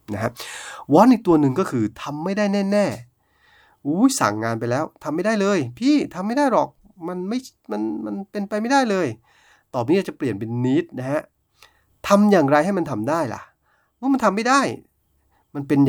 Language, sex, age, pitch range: Thai, male, 30-49, 115-185 Hz